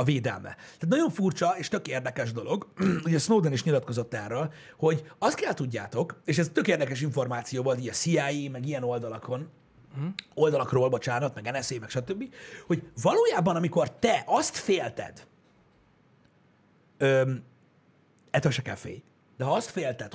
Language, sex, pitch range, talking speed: Hungarian, male, 130-170 Hz, 145 wpm